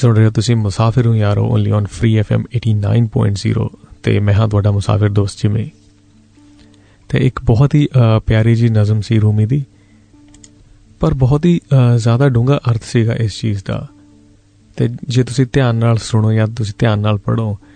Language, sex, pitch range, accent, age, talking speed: Hindi, male, 105-120 Hz, native, 30-49, 155 wpm